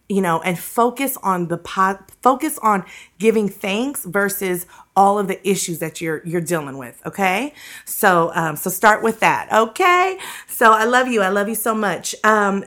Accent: American